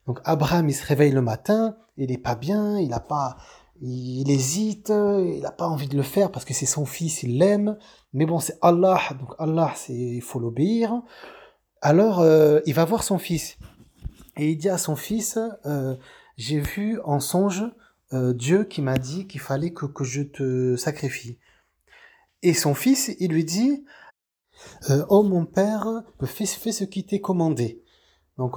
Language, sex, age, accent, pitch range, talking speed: French, male, 30-49, French, 135-195 Hz, 185 wpm